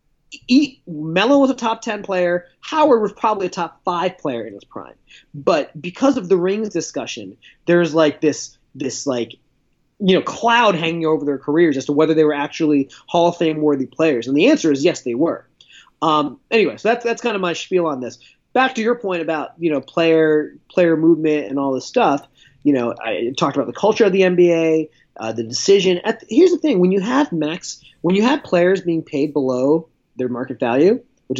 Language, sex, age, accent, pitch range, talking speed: English, male, 30-49, American, 155-225 Hz, 210 wpm